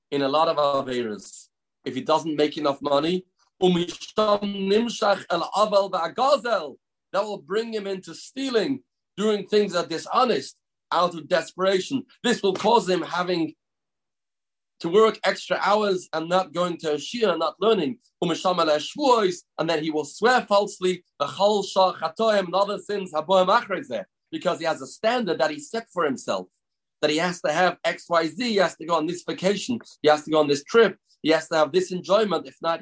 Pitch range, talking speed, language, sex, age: 160-210 Hz, 155 wpm, English, male, 40-59